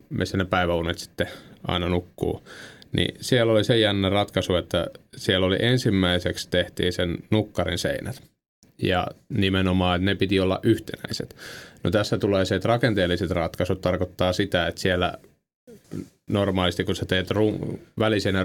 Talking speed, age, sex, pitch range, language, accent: 140 wpm, 30-49, male, 90-105 Hz, Finnish, native